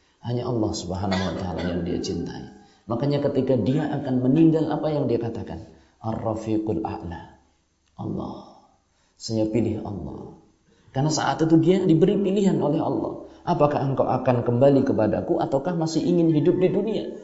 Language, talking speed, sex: Malay, 145 wpm, male